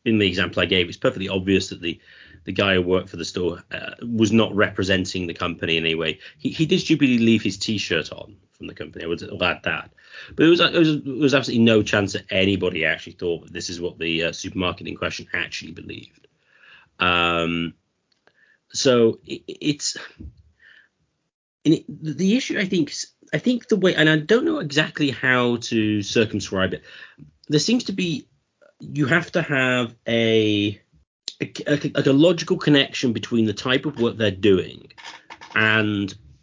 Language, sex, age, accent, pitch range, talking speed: English, male, 30-49, British, 95-140 Hz, 185 wpm